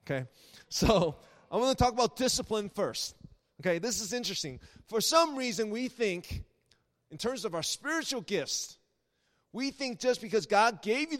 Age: 30-49